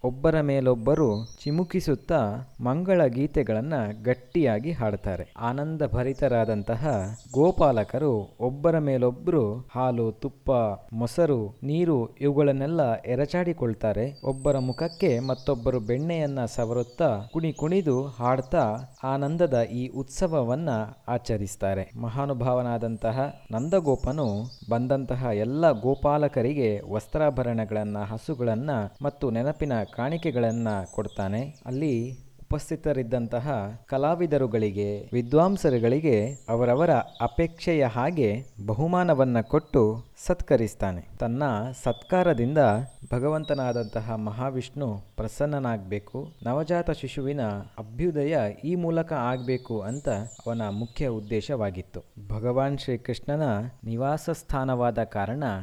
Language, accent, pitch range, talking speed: Kannada, native, 110-145 Hz, 75 wpm